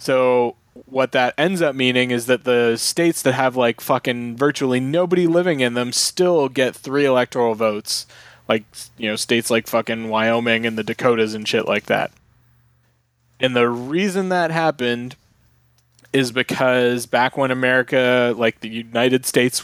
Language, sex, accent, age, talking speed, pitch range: English, male, American, 20-39, 160 wpm, 120-130 Hz